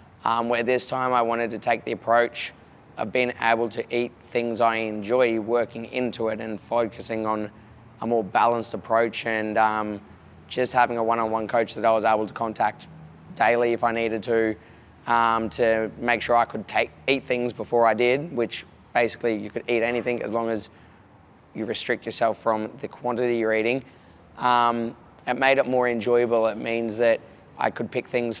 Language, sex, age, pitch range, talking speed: English, male, 20-39, 110-120 Hz, 185 wpm